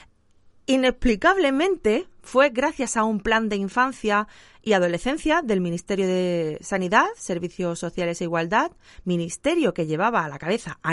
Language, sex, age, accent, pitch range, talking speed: Spanish, female, 30-49, Spanish, 185-250 Hz, 135 wpm